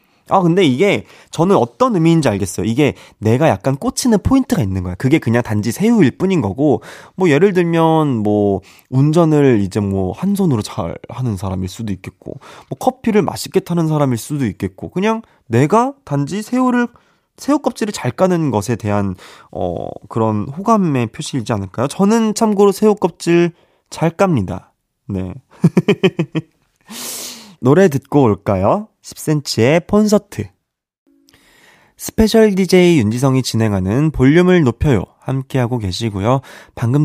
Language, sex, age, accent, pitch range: Korean, male, 20-39, native, 115-185 Hz